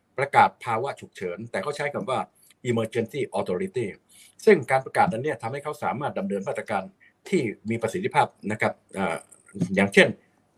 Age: 60-79